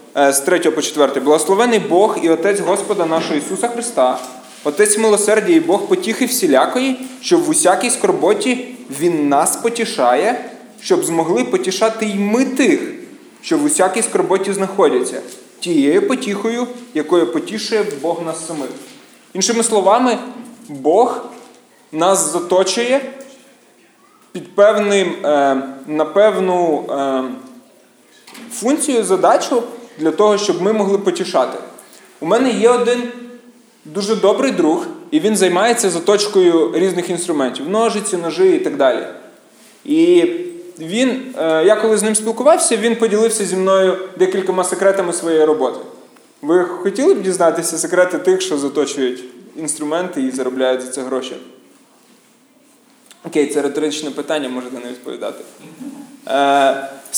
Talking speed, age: 125 wpm, 20-39